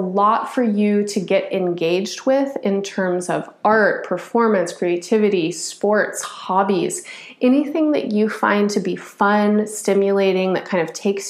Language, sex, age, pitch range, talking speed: English, female, 20-39, 180-220 Hz, 145 wpm